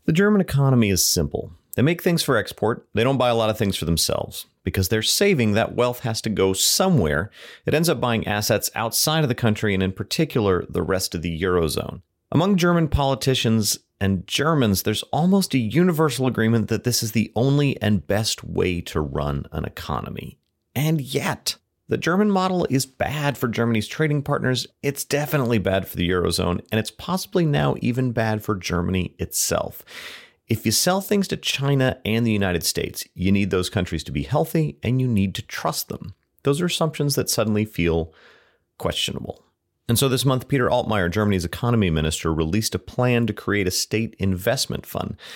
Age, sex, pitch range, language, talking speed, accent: 30-49, male, 95-135 Hz, English, 185 wpm, American